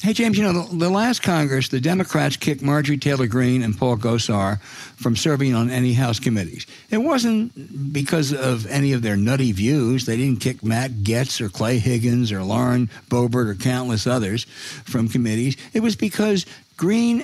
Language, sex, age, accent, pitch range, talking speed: English, male, 60-79, American, 120-170 Hz, 180 wpm